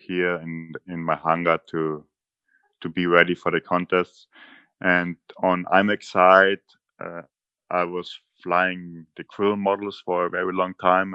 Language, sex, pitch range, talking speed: English, male, 80-90 Hz, 155 wpm